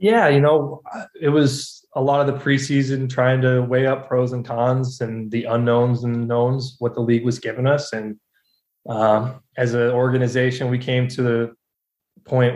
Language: English